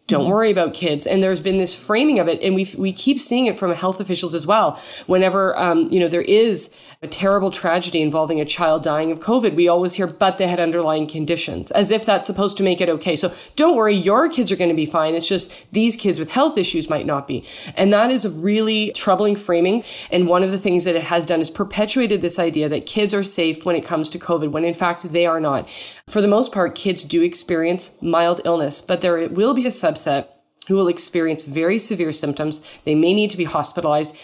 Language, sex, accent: English, female, American